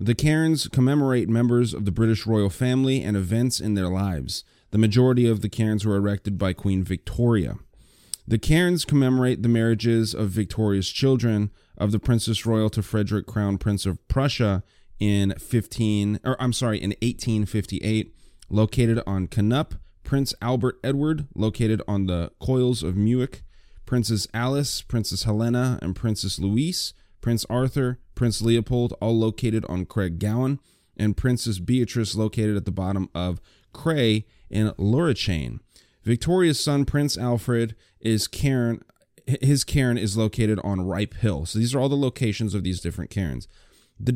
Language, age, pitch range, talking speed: English, 30-49, 100-120 Hz, 150 wpm